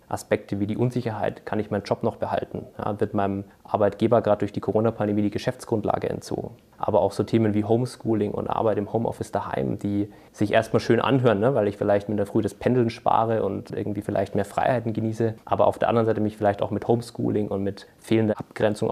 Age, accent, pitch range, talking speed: 20-39, German, 105-115 Hz, 205 wpm